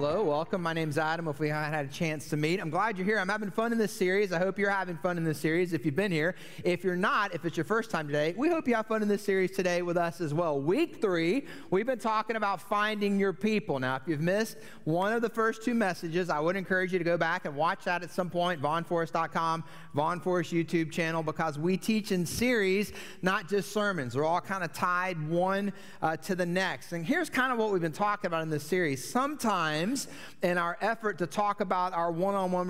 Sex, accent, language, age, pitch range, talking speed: male, American, English, 30-49, 165-200 Hz, 245 wpm